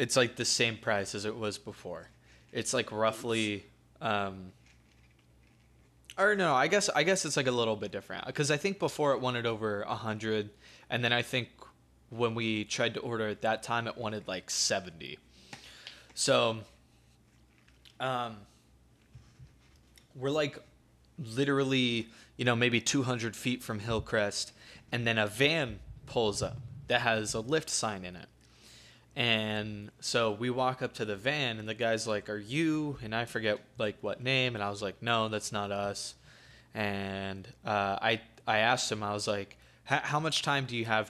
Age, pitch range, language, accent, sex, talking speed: 20-39, 105-125 Hz, English, American, male, 170 wpm